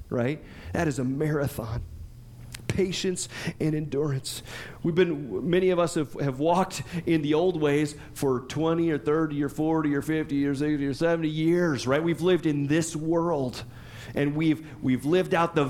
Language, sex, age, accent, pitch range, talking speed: English, male, 40-59, American, 135-190 Hz, 170 wpm